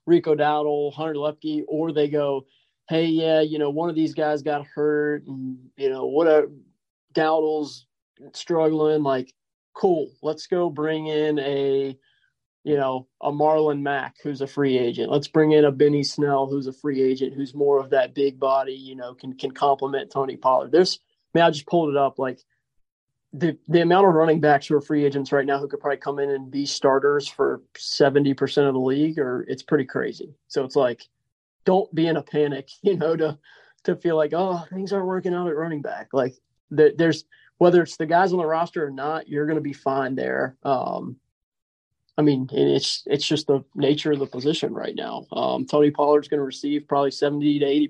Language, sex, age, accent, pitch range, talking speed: English, male, 20-39, American, 140-155 Hz, 205 wpm